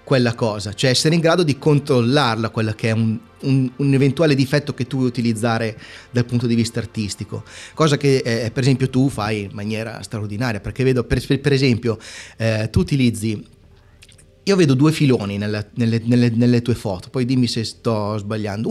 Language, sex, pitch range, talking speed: Italian, male, 110-140 Hz, 175 wpm